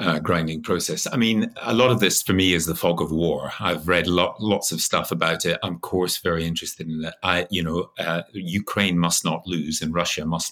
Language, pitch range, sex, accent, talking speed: English, 85-105 Hz, male, British, 240 wpm